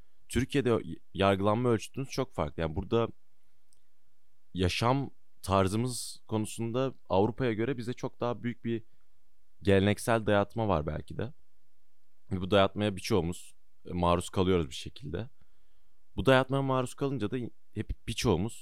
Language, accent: Turkish, native